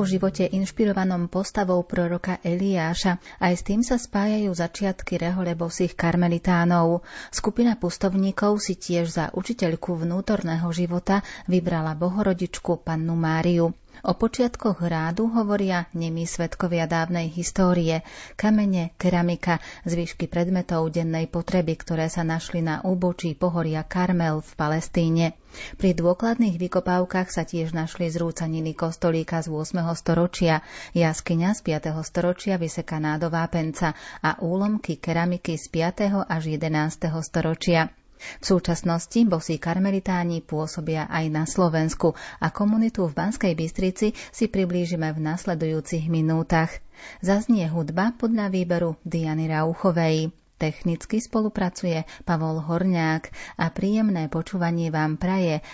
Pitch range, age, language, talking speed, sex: 165-185 Hz, 30-49, Slovak, 115 wpm, female